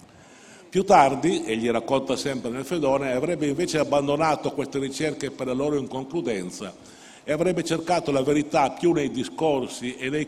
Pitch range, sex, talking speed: 125-160 Hz, male, 150 wpm